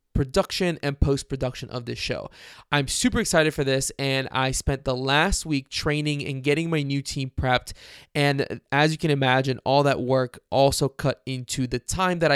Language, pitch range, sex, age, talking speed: English, 130-155 Hz, male, 20-39, 190 wpm